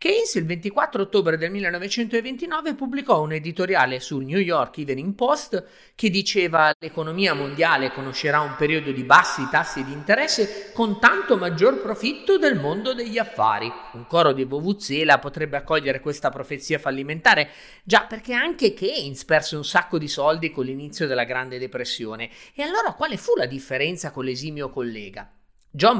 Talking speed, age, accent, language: 155 wpm, 30-49, native, Italian